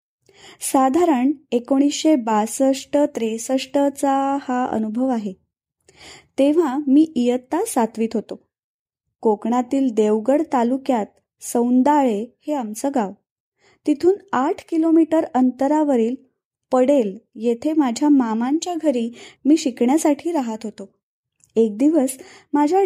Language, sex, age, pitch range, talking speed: Marathi, female, 20-39, 240-300 Hz, 40 wpm